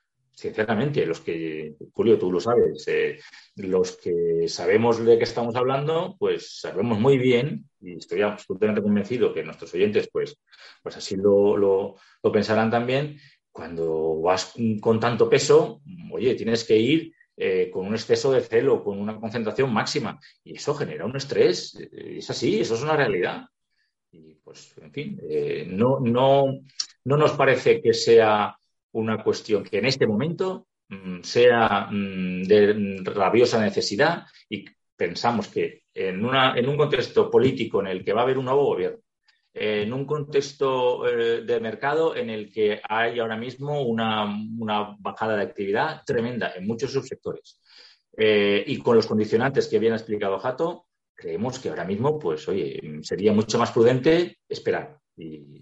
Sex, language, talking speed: male, Spanish, 160 wpm